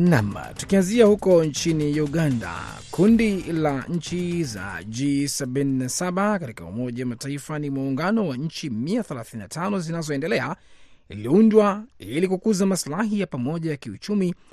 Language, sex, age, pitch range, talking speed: Swahili, male, 30-49, 130-180 Hz, 105 wpm